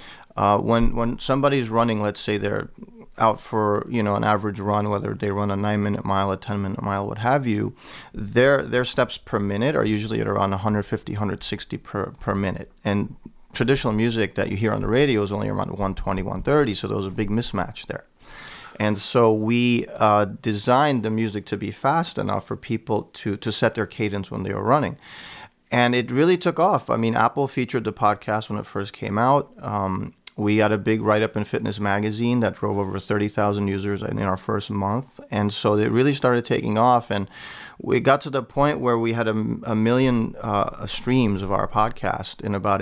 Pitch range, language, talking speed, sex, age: 100-115 Hz, English, 205 wpm, male, 30-49